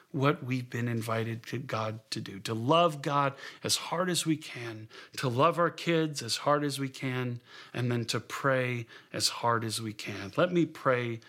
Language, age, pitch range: English, 40-59, 120-155 Hz